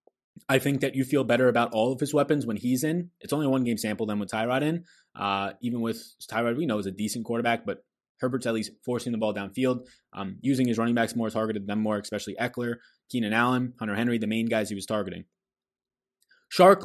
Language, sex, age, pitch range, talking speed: English, male, 20-39, 105-130 Hz, 220 wpm